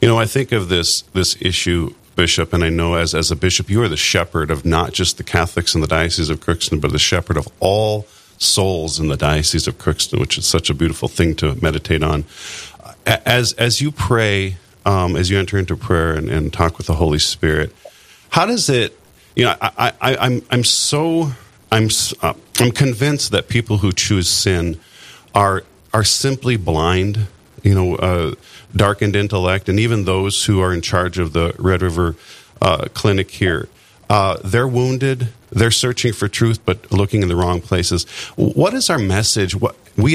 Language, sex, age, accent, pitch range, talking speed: English, male, 40-59, American, 85-110 Hz, 190 wpm